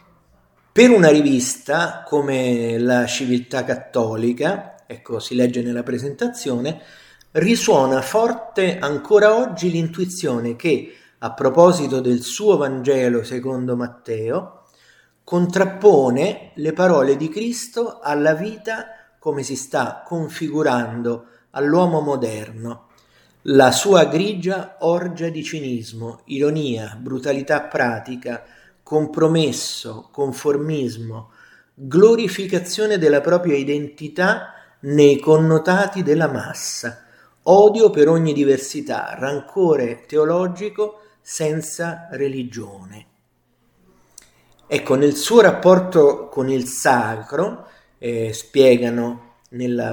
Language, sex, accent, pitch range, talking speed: Italian, male, native, 120-175 Hz, 90 wpm